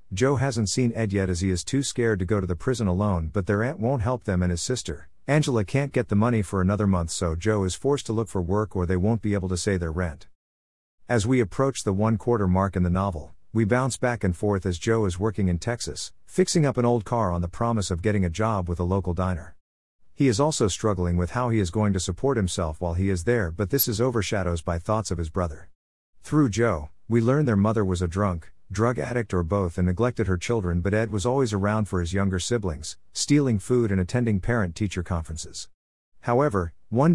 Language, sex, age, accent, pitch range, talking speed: English, male, 50-69, American, 90-115 Hz, 235 wpm